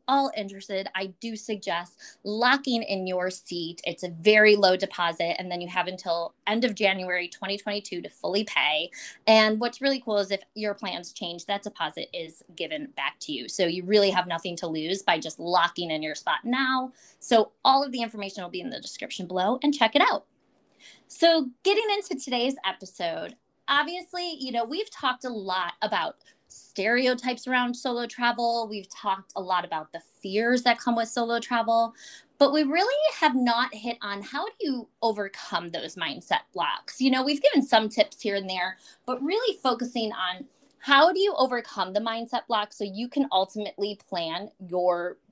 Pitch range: 185-260 Hz